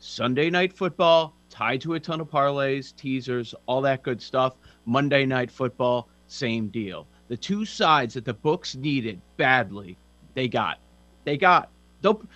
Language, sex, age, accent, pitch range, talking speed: English, male, 30-49, American, 130-195 Hz, 155 wpm